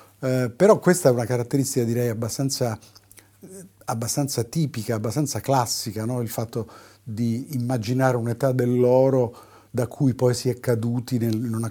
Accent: native